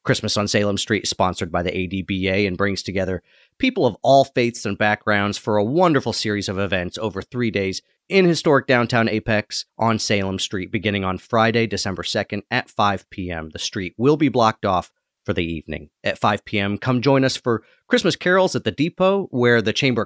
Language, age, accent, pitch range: English, 30-49, American, 105-135 Hz